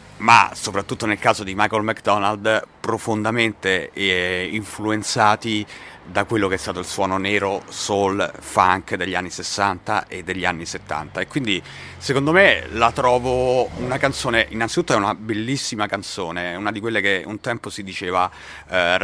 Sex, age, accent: male, 40-59, native